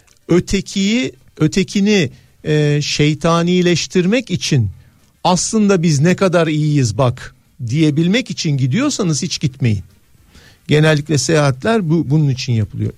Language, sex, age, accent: Turkish, male, 50-69, native